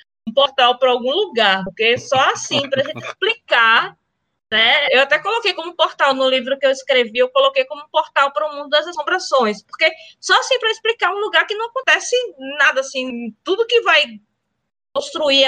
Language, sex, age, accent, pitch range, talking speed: Portuguese, female, 20-39, Brazilian, 230-310 Hz, 185 wpm